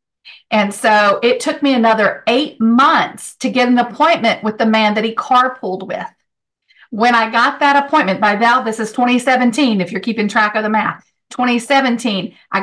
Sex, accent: female, American